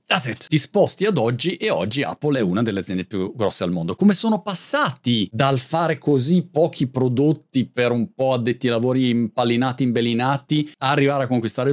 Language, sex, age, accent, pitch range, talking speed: Italian, male, 40-59, native, 115-180 Hz, 175 wpm